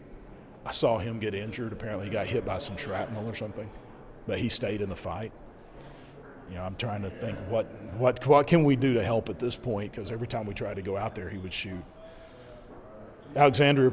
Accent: American